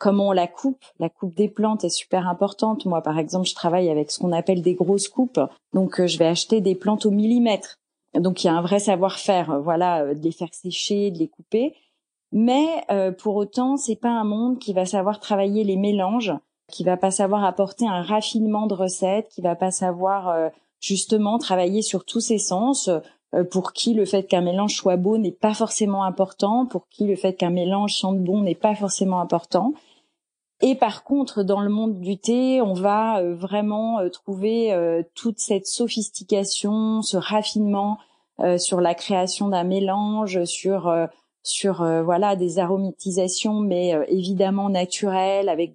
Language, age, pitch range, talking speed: French, 30-49, 180-210 Hz, 185 wpm